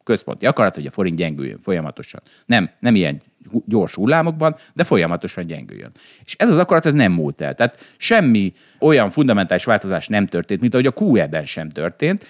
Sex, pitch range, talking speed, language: male, 95-145 Hz, 170 wpm, Hungarian